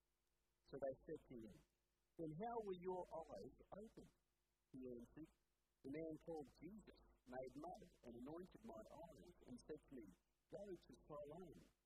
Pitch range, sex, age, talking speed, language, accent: 120-170 Hz, male, 50-69, 150 wpm, English, American